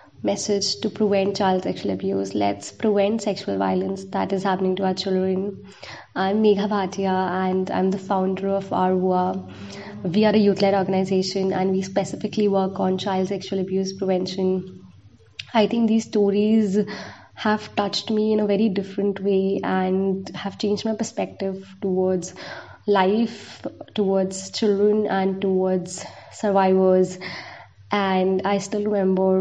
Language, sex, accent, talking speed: English, female, Indian, 135 wpm